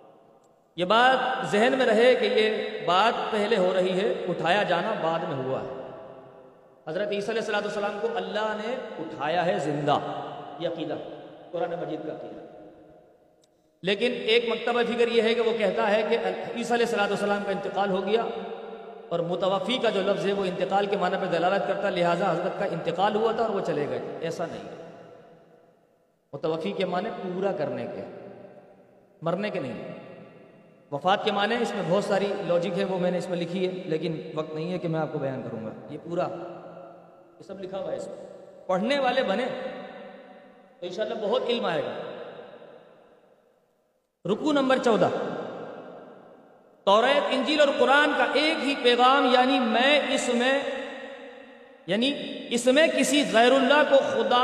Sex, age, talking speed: male, 40-59, 170 wpm